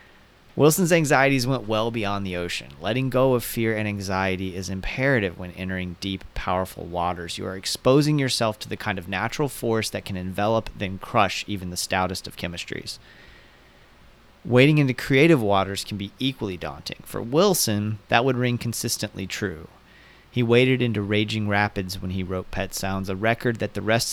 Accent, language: American, English